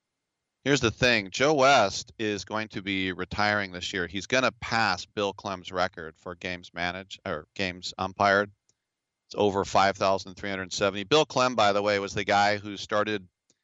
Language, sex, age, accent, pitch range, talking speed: English, male, 40-59, American, 95-115 Hz, 165 wpm